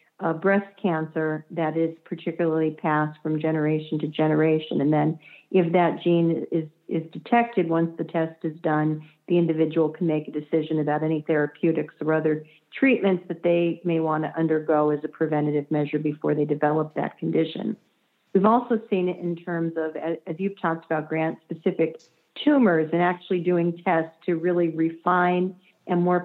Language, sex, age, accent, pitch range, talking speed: English, female, 50-69, American, 160-180 Hz, 165 wpm